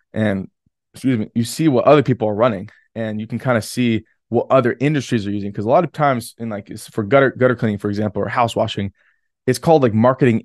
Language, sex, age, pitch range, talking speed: English, male, 20-39, 105-125 Hz, 240 wpm